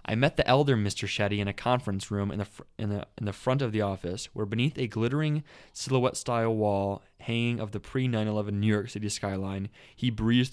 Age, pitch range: 20-39, 105-125 Hz